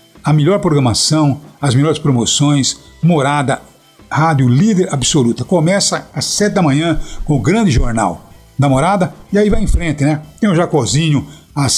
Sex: male